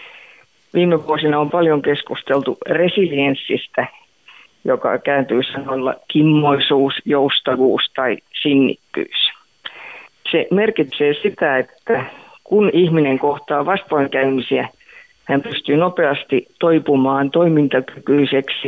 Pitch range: 135-175 Hz